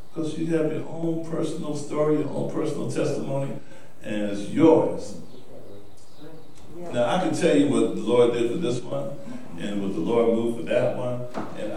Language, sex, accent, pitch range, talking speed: English, male, American, 115-165 Hz, 175 wpm